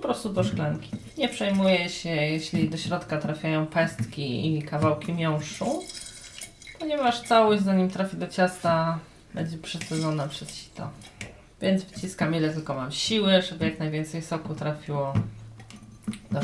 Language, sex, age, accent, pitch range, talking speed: Polish, female, 30-49, native, 140-180 Hz, 135 wpm